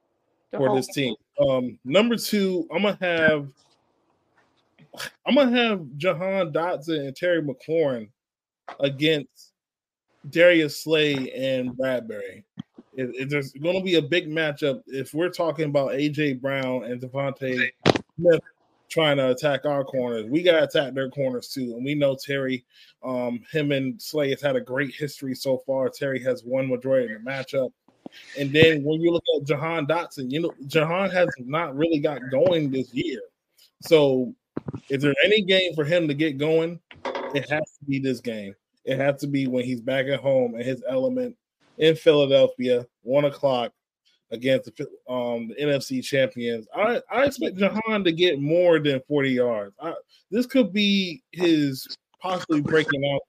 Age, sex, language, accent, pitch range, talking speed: 20-39, male, English, American, 130-170 Hz, 165 wpm